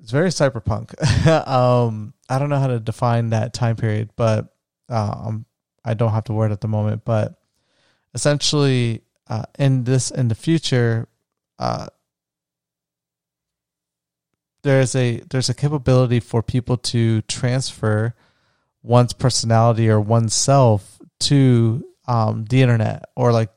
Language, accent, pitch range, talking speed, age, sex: English, American, 110-130 Hz, 130 wpm, 30-49, male